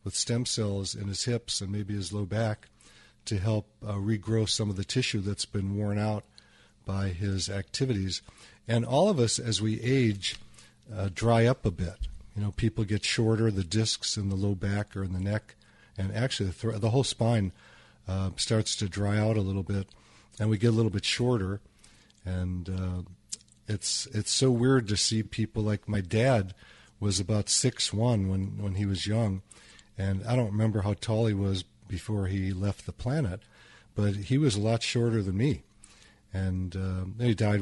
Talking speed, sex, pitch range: 195 wpm, male, 100-115 Hz